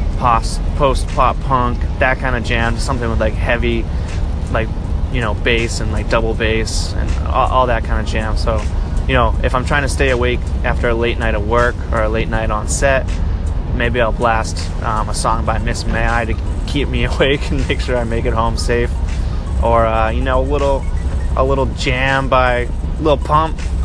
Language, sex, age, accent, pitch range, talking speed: English, male, 20-39, American, 80-115 Hz, 205 wpm